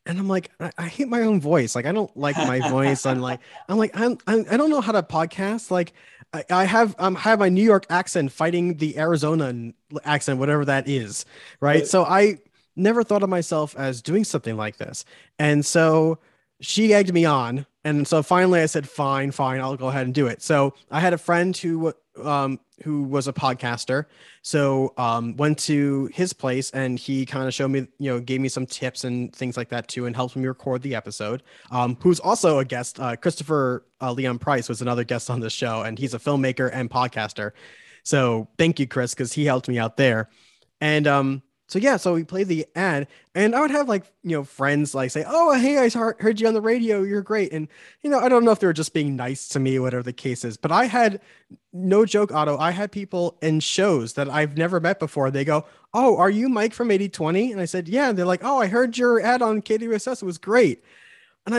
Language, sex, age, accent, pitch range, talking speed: English, male, 20-39, American, 135-200 Hz, 225 wpm